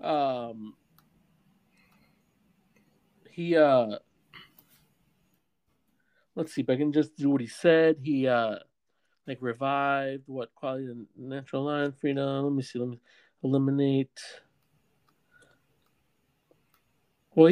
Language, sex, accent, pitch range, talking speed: English, male, American, 125-150 Hz, 105 wpm